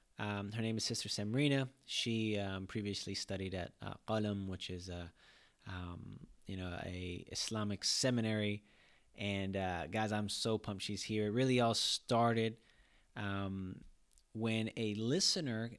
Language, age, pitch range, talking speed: English, 20-39, 100-125 Hz, 145 wpm